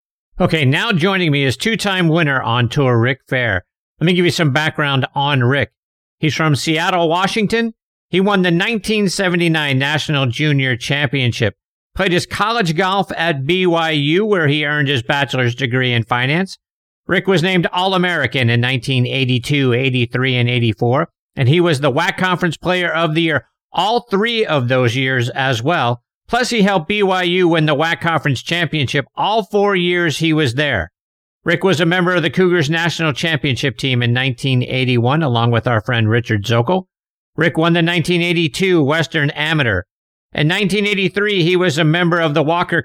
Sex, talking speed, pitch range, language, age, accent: male, 165 wpm, 130-180 Hz, English, 50-69, American